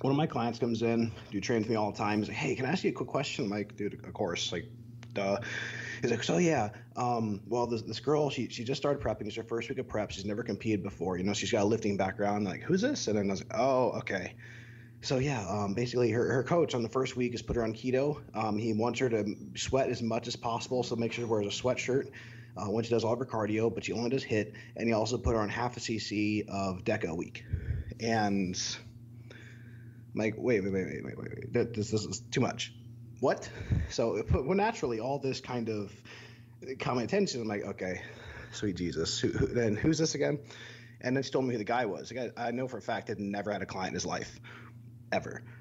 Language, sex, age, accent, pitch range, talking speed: English, male, 20-39, American, 105-120 Hz, 255 wpm